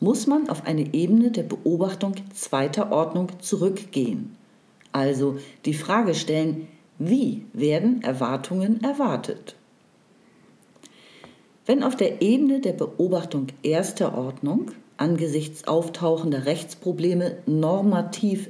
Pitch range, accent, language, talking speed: 150-225 Hz, German, German, 95 wpm